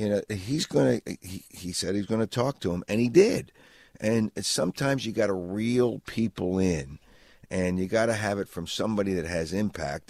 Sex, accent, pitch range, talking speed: male, American, 90-115 Hz, 215 wpm